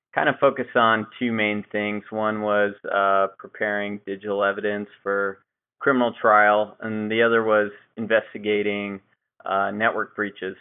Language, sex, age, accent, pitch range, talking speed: English, male, 20-39, American, 100-105 Hz, 135 wpm